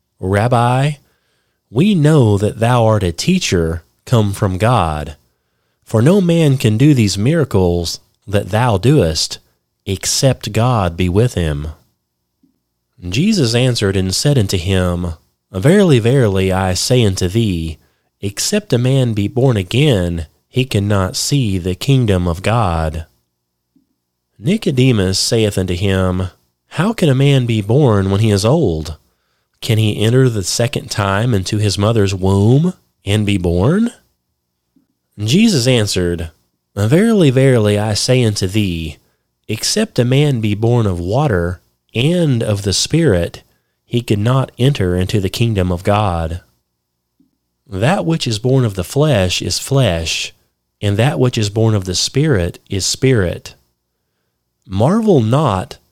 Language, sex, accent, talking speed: English, male, American, 135 wpm